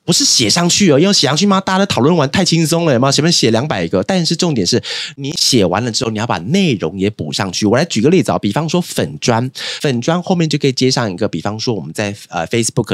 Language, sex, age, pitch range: Chinese, male, 30-49, 100-155 Hz